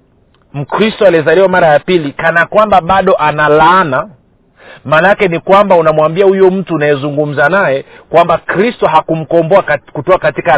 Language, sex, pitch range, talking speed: Swahili, male, 155-195 Hz, 125 wpm